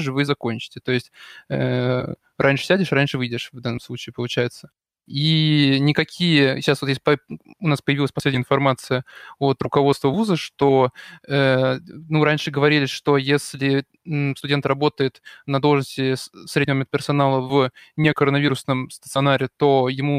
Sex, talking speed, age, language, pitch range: male, 135 wpm, 20-39, Russian, 130-150 Hz